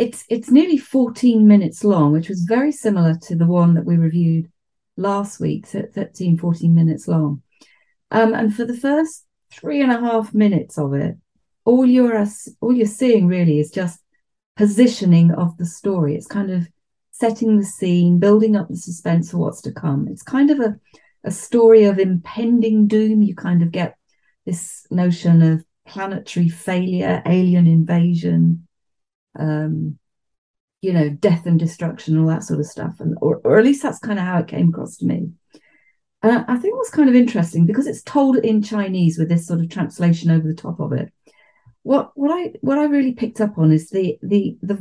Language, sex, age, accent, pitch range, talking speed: English, female, 40-59, British, 165-230 Hz, 190 wpm